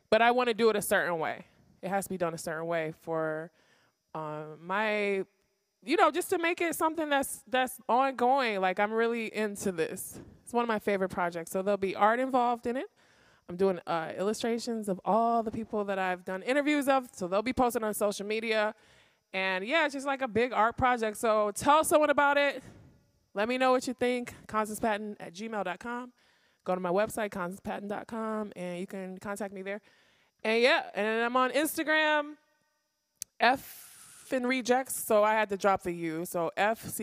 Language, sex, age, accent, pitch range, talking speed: English, male, 20-39, American, 195-255 Hz, 200 wpm